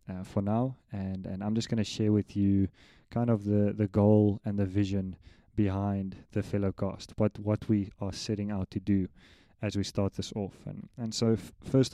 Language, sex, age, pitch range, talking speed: English, male, 20-39, 95-105 Hz, 200 wpm